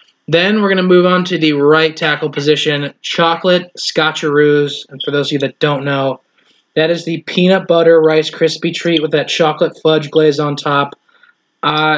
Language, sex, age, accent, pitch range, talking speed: English, male, 20-39, American, 145-180 Hz, 180 wpm